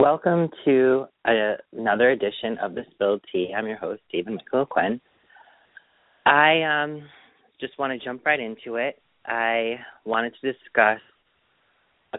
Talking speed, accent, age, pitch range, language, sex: 140 wpm, American, 30-49, 105-155 Hz, English, male